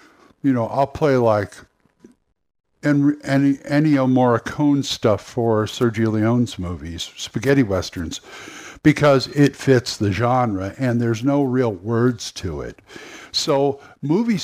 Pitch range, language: 110-140 Hz, English